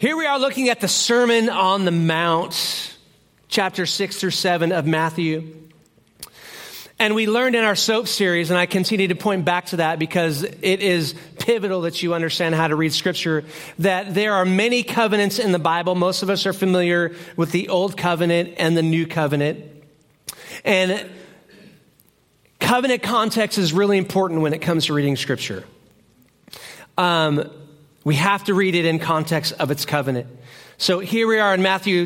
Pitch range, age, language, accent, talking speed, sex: 160-205 Hz, 40-59, English, American, 170 wpm, male